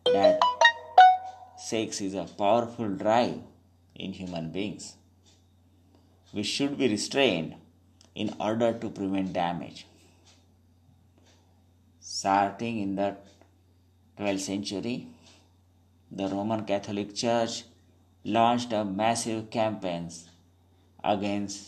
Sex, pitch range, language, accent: male, 90-110 Hz, Marathi, native